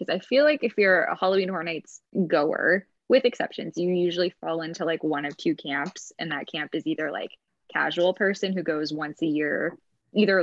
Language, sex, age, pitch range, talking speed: English, female, 10-29, 160-200 Hz, 205 wpm